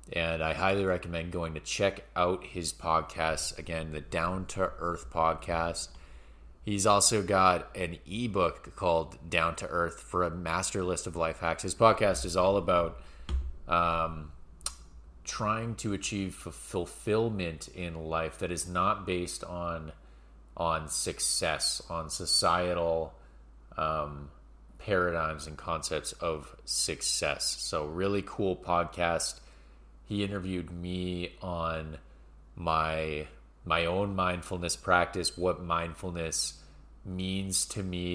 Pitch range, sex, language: 80-90 Hz, male, English